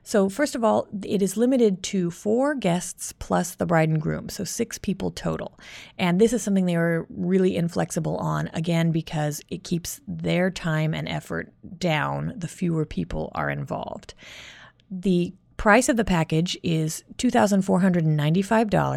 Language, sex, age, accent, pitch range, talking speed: English, female, 30-49, American, 155-200 Hz, 155 wpm